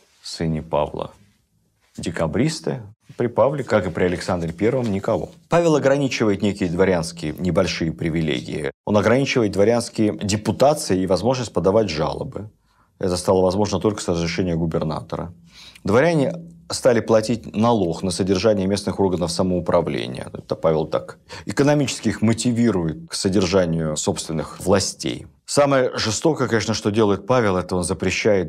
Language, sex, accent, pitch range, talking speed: Russian, male, native, 90-110 Hz, 125 wpm